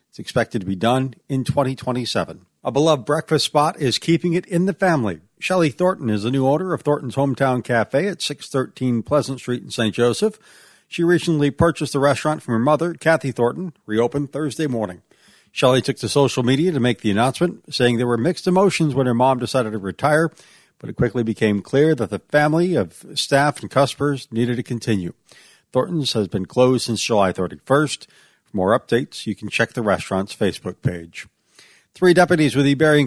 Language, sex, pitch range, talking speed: English, male, 115-150 Hz, 185 wpm